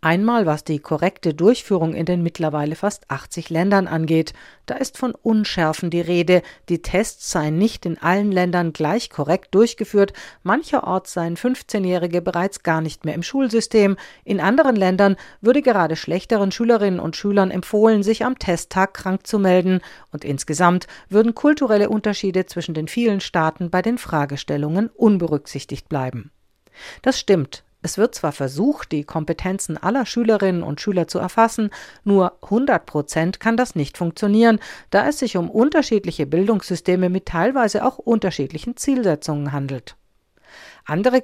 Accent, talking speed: German, 145 wpm